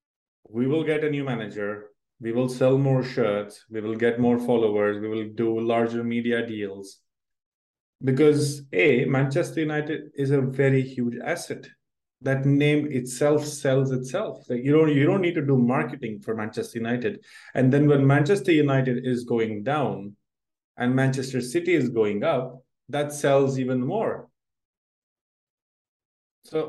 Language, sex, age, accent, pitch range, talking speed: English, male, 20-39, Indian, 120-150 Hz, 145 wpm